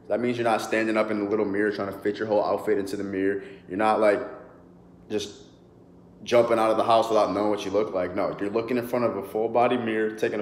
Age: 20-39